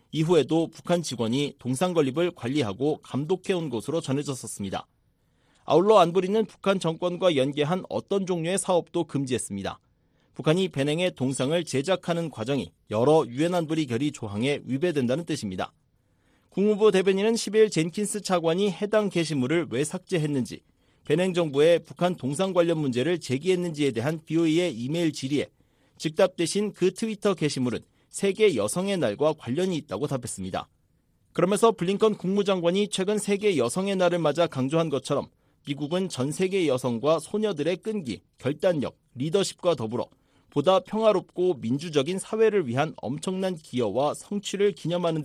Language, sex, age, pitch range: Korean, male, 40-59, 140-190 Hz